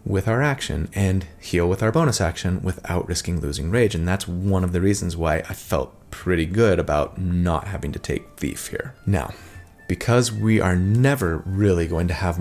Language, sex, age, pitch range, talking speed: English, male, 30-49, 85-110 Hz, 195 wpm